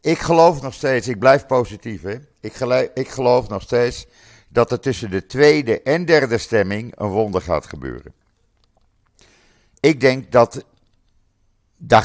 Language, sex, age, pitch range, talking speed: Dutch, male, 50-69, 95-130 Hz, 150 wpm